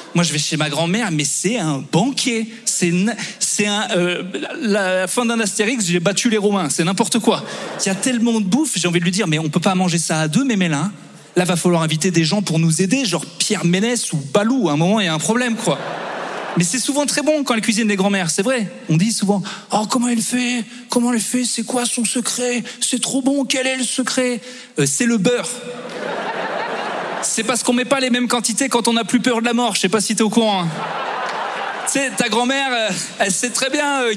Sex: male